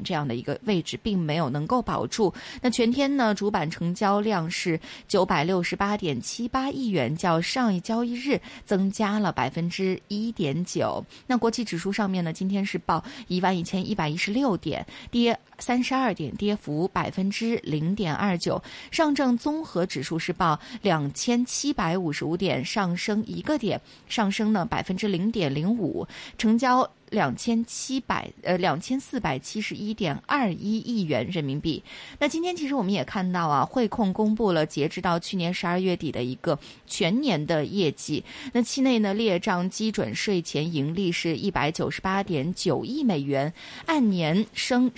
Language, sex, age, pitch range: Chinese, female, 20-39, 170-230 Hz